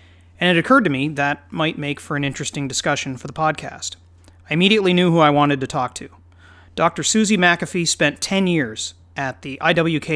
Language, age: English, 30-49